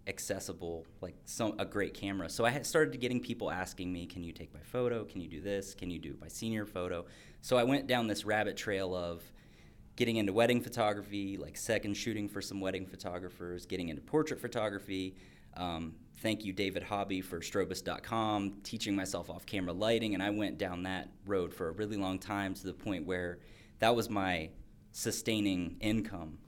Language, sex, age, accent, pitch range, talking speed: English, male, 20-39, American, 95-110 Hz, 190 wpm